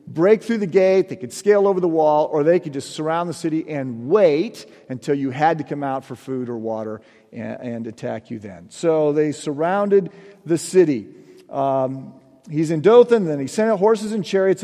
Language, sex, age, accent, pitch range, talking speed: English, male, 40-59, American, 140-195 Hz, 205 wpm